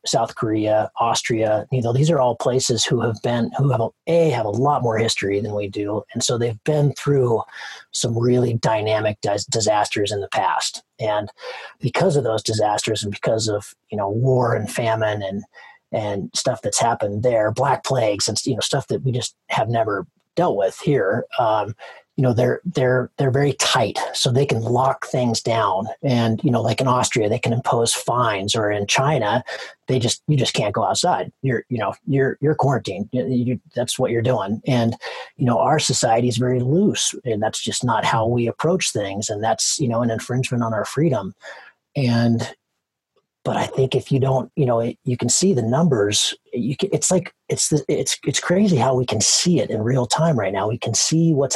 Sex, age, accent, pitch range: male, 30-49, American, 110-135 Hz